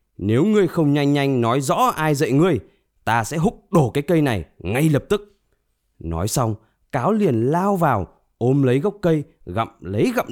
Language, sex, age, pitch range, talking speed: Vietnamese, male, 20-39, 105-160 Hz, 190 wpm